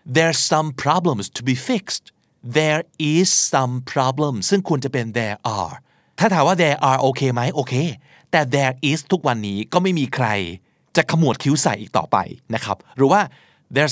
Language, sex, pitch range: Thai, male, 125-155 Hz